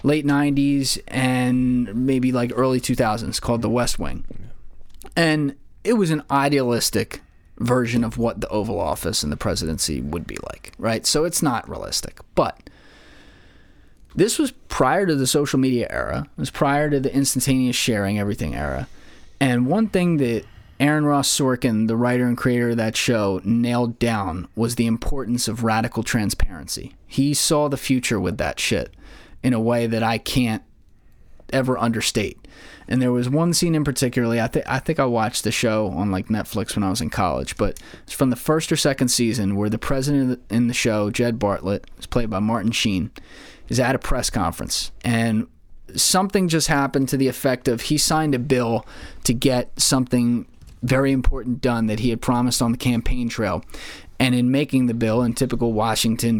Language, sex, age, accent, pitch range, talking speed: English, male, 20-39, American, 110-135 Hz, 180 wpm